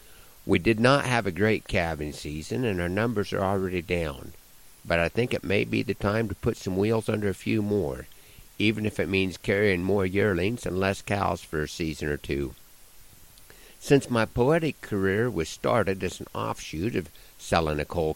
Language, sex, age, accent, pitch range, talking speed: English, male, 50-69, American, 85-110 Hz, 190 wpm